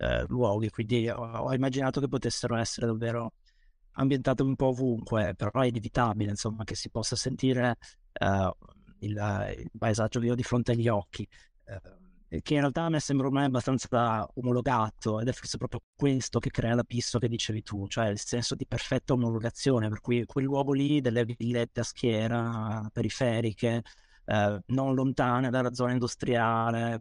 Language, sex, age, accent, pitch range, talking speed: Italian, male, 30-49, native, 110-130 Hz, 165 wpm